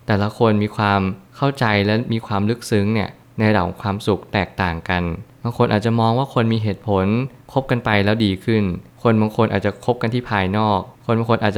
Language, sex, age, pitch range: Thai, male, 20-39, 100-120 Hz